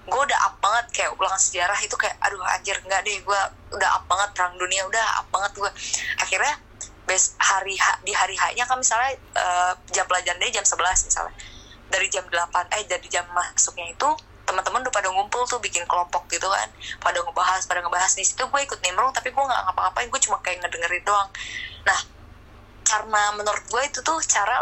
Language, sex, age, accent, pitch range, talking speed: Indonesian, female, 20-39, native, 180-240 Hz, 195 wpm